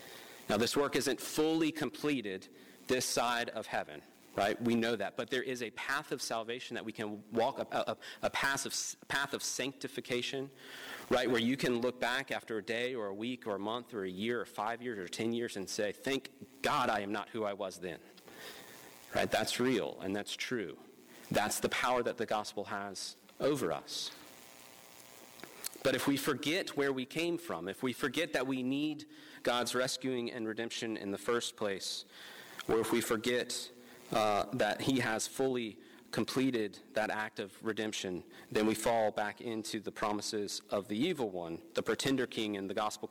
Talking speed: 185 wpm